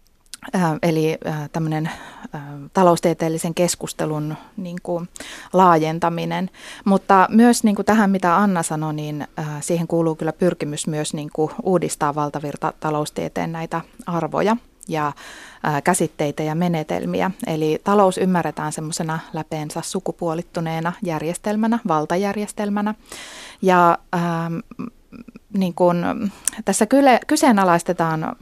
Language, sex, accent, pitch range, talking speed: Finnish, female, native, 160-200 Hz, 90 wpm